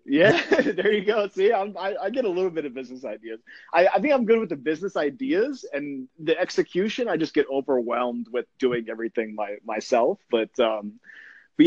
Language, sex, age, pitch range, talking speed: English, male, 30-49, 125-180 Hz, 195 wpm